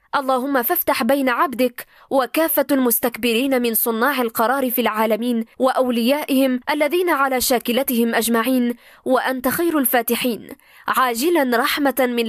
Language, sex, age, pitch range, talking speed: Arabic, female, 20-39, 235-275 Hz, 105 wpm